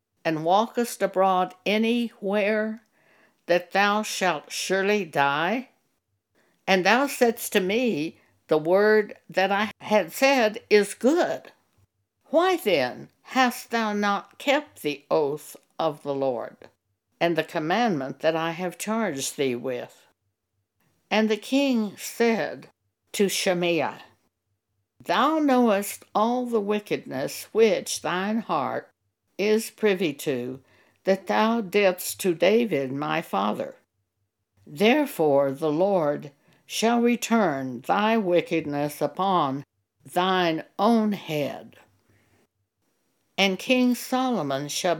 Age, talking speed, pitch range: 60-79, 110 wpm, 140-215 Hz